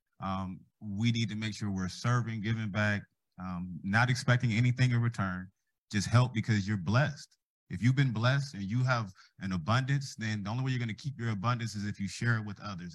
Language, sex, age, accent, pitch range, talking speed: English, male, 30-49, American, 95-115 Hz, 220 wpm